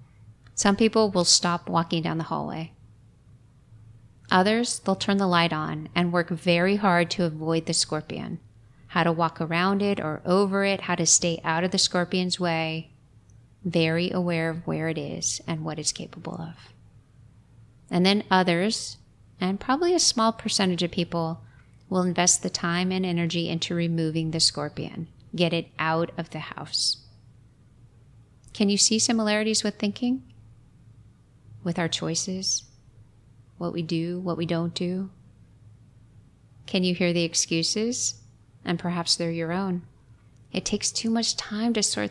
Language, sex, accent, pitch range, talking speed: English, female, American, 120-185 Hz, 155 wpm